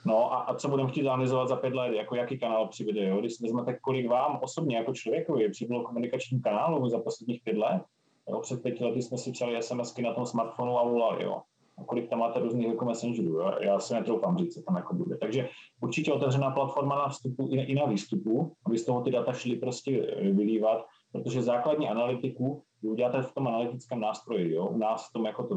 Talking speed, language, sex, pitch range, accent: 215 wpm, Czech, male, 115-135 Hz, native